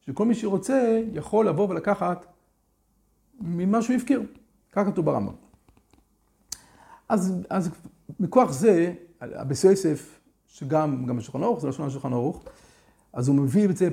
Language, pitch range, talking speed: Hebrew, 135-205 Hz, 105 wpm